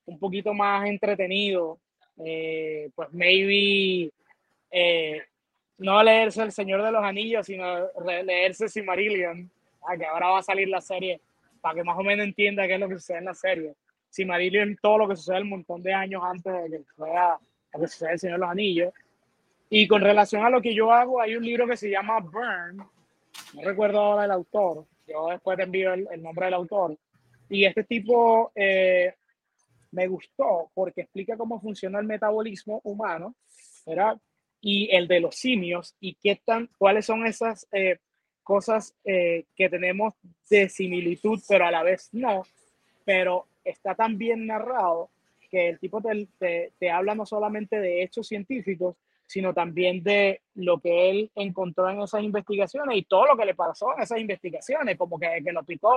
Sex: male